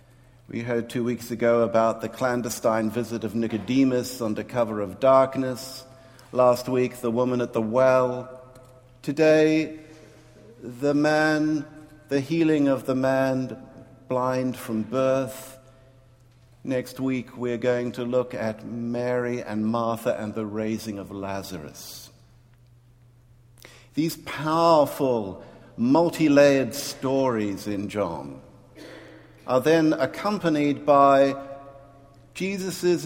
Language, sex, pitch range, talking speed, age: English, male, 120-145 Hz, 105 wpm, 60-79